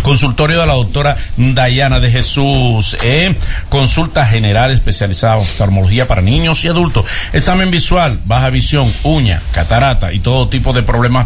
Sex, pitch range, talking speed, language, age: male, 110-140 Hz, 150 wpm, Spanish, 50-69